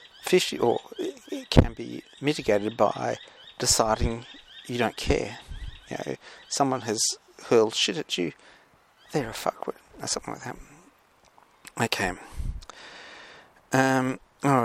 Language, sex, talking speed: English, male, 110 wpm